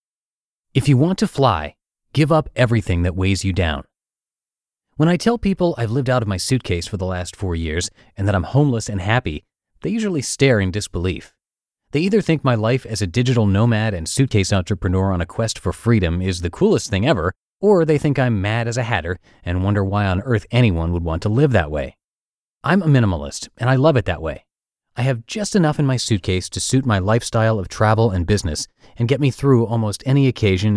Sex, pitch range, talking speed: male, 95-135 Hz, 215 wpm